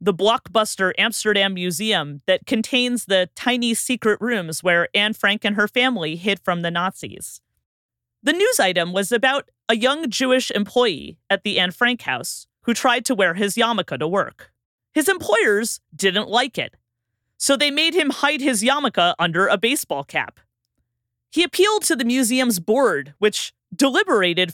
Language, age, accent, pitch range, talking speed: English, 30-49, American, 180-265 Hz, 160 wpm